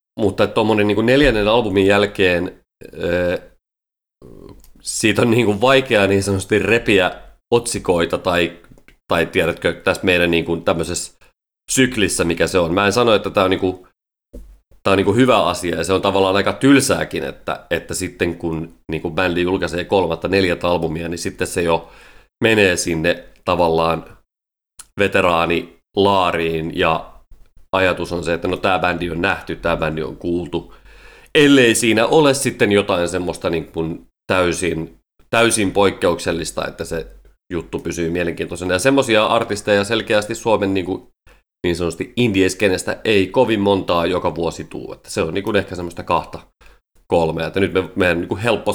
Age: 30-49